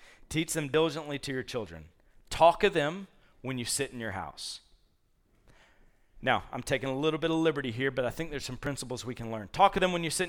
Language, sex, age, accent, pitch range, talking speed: English, male, 40-59, American, 130-175 Hz, 225 wpm